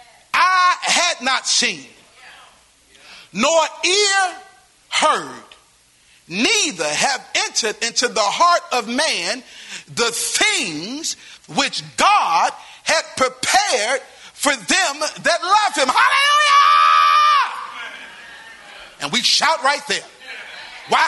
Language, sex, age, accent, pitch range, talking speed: English, male, 40-59, American, 260-385 Hz, 95 wpm